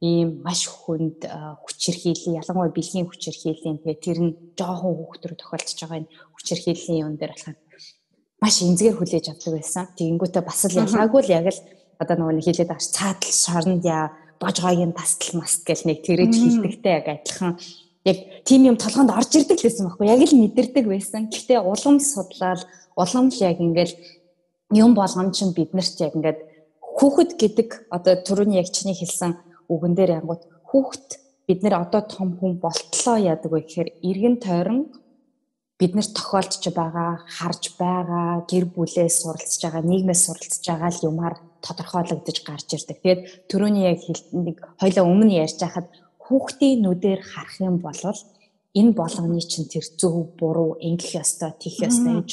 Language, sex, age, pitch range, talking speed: English, female, 20-39, 170-195 Hz, 100 wpm